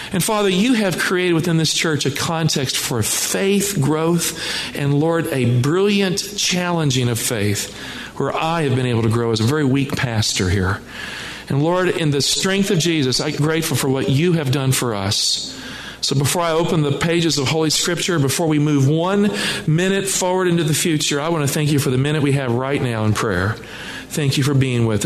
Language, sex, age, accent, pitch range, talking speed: English, male, 40-59, American, 140-190 Hz, 205 wpm